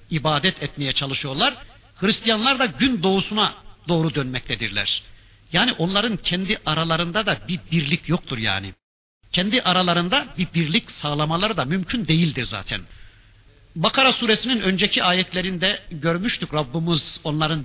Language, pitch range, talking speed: Turkish, 120-190 Hz, 115 wpm